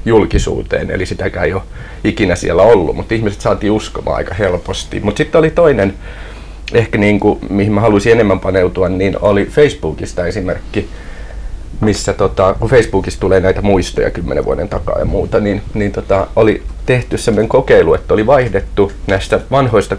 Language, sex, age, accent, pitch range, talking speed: Finnish, male, 30-49, native, 95-105 Hz, 155 wpm